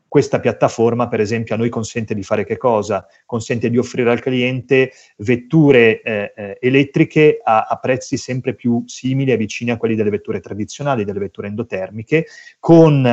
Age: 30-49